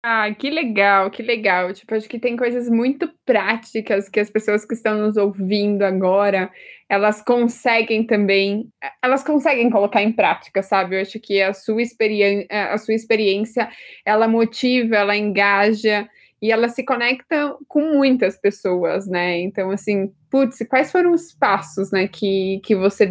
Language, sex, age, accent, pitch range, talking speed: Portuguese, female, 20-39, Brazilian, 205-250 Hz, 155 wpm